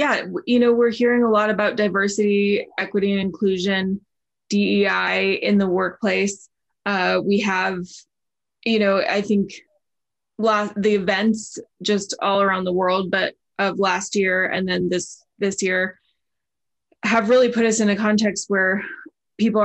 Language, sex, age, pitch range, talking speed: English, female, 20-39, 190-215 Hz, 150 wpm